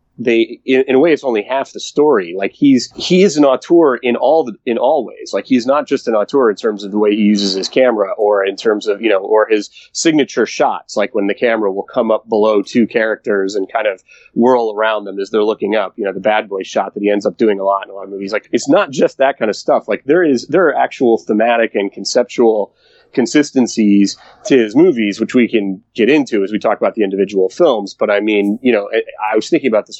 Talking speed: 255 wpm